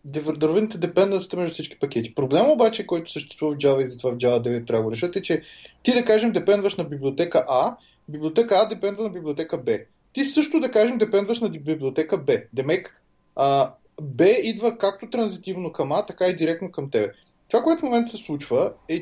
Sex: male